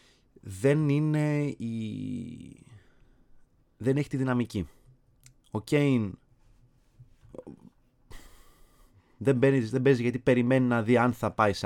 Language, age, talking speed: Greek, 30-49, 110 wpm